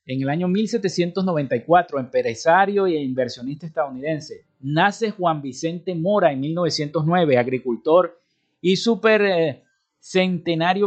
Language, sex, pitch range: Spanish, male, 145-180 Hz